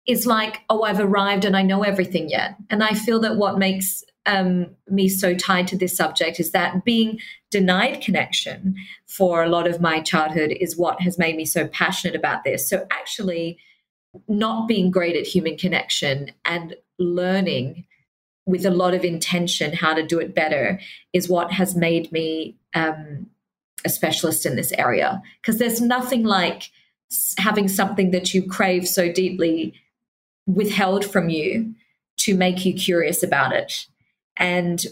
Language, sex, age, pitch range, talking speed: English, female, 40-59, 175-200 Hz, 165 wpm